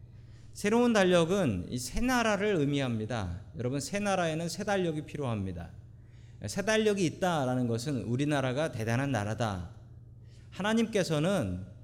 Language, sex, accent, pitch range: Korean, male, native, 115-170 Hz